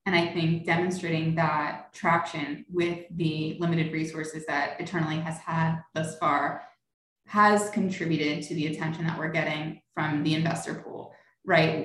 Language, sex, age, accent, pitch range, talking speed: English, female, 20-39, American, 160-185 Hz, 145 wpm